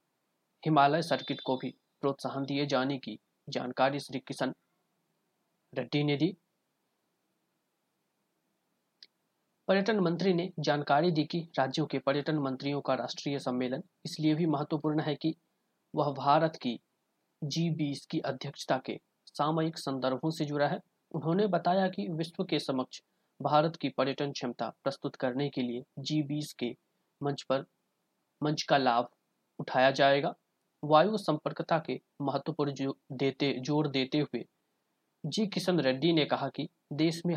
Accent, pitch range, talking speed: native, 135-165 Hz, 120 wpm